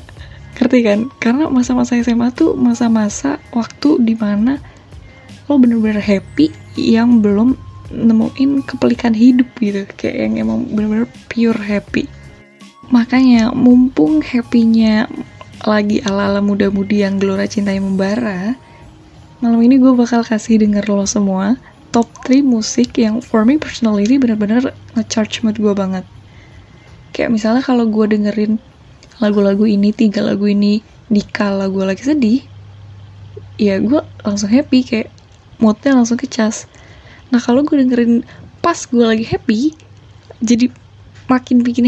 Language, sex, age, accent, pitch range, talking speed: Indonesian, female, 10-29, native, 200-245 Hz, 125 wpm